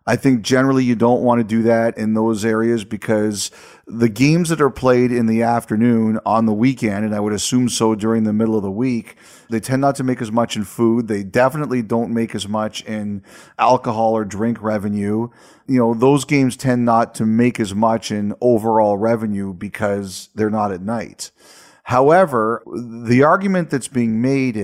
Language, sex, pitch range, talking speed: English, male, 110-125 Hz, 190 wpm